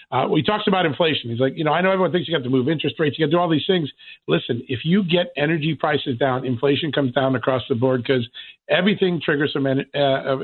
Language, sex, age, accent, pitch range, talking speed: English, male, 50-69, American, 130-160 Hz, 265 wpm